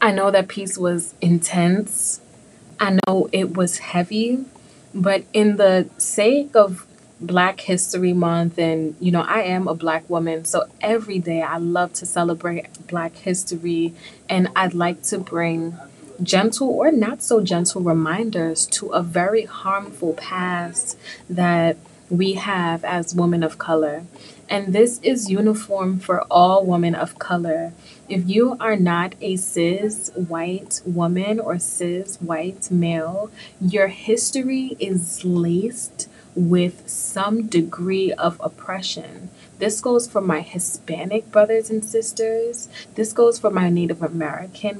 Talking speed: 135 wpm